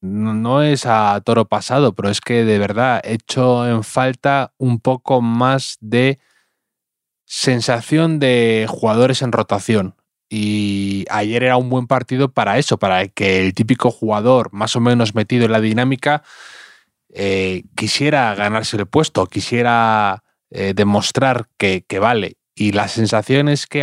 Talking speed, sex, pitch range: 150 wpm, male, 105-125 Hz